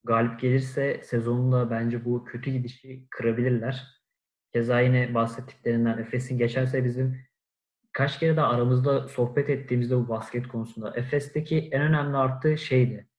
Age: 30-49